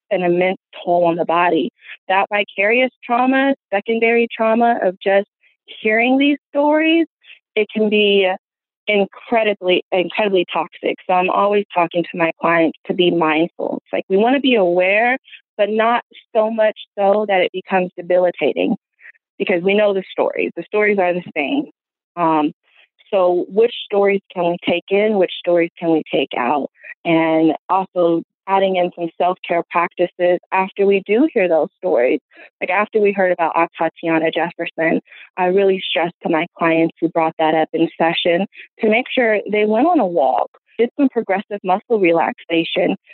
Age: 30-49